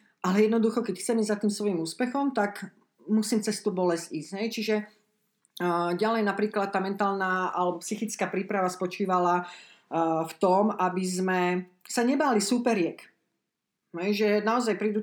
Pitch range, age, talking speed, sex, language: 185-215 Hz, 40-59, 140 wpm, female, Slovak